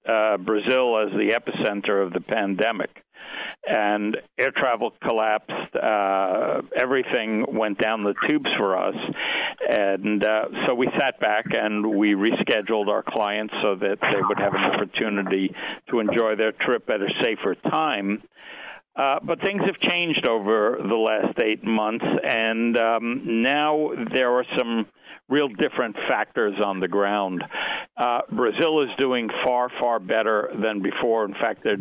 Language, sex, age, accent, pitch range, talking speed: English, male, 60-79, American, 105-130 Hz, 150 wpm